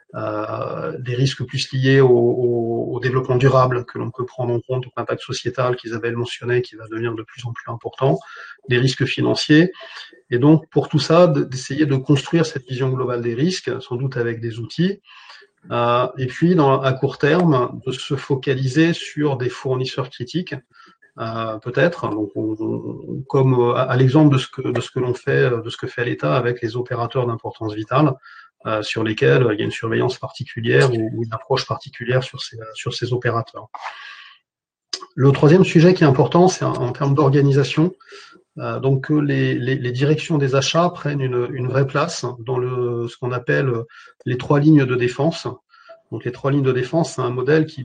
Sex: male